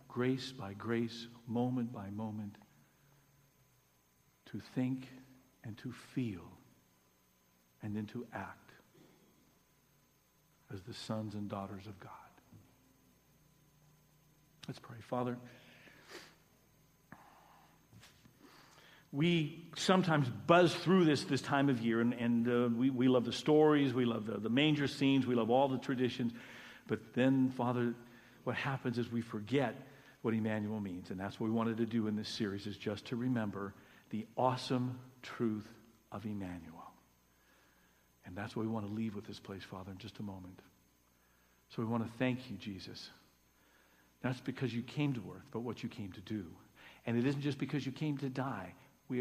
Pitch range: 100-130 Hz